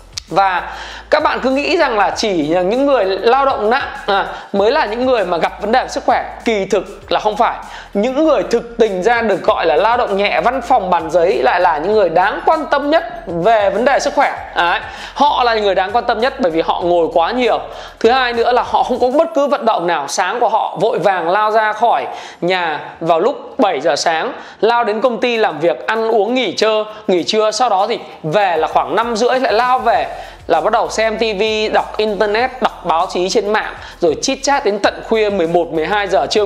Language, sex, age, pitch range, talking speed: Vietnamese, male, 20-39, 205-270 Hz, 230 wpm